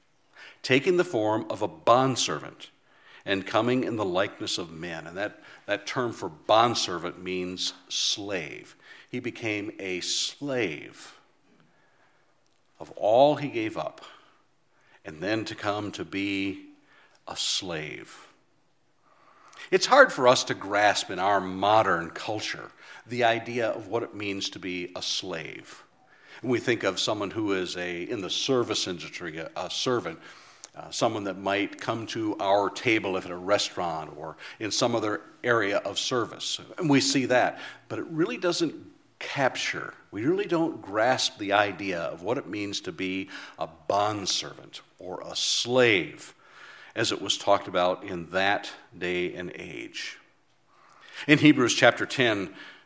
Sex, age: male, 50-69